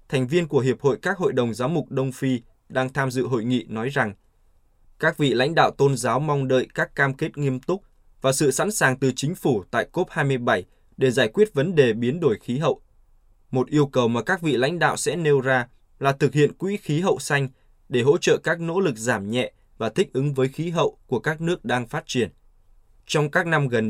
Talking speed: 230 wpm